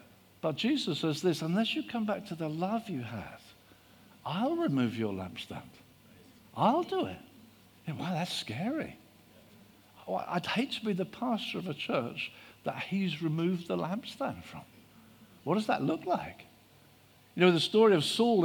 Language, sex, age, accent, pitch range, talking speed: English, male, 60-79, British, 125-200 Hz, 160 wpm